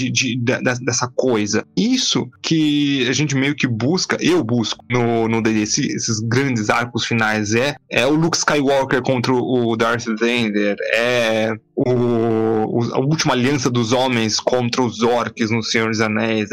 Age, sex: 20-39, male